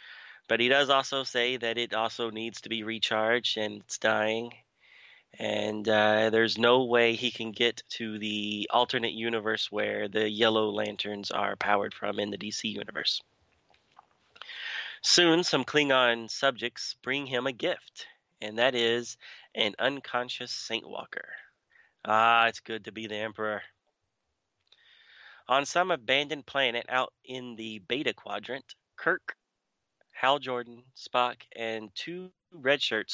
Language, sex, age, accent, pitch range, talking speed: English, male, 30-49, American, 110-125 Hz, 140 wpm